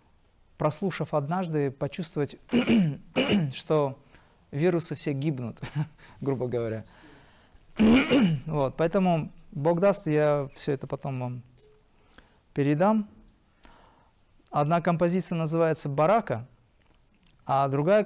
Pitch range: 140-175 Hz